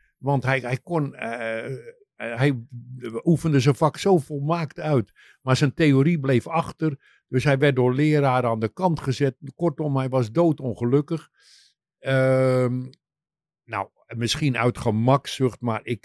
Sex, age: male, 50-69